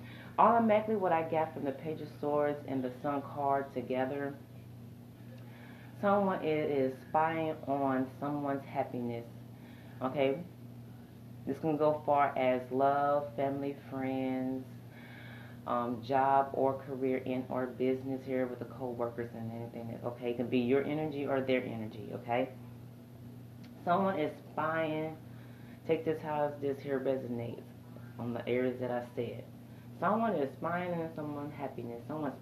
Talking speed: 135 wpm